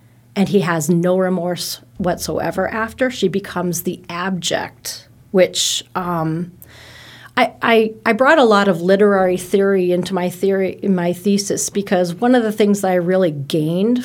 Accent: American